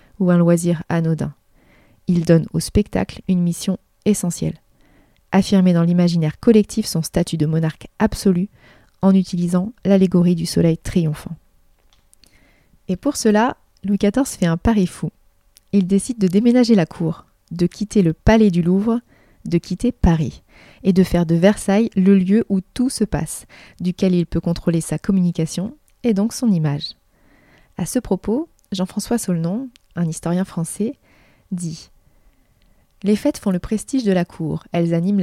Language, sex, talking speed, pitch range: French, female, 155 wpm, 165-205 Hz